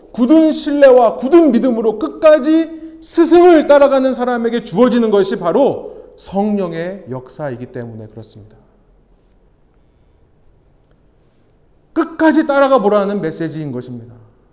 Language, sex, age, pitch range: Korean, male, 30-49, 145-240 Hz